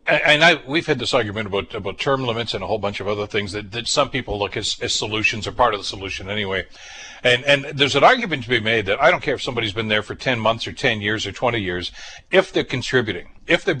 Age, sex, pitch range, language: 60-79, male, 110-140 Hz, English